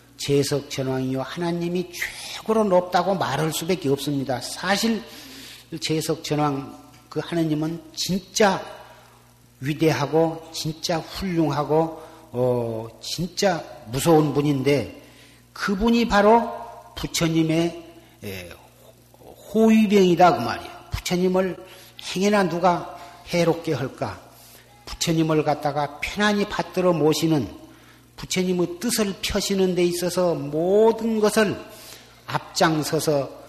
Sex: male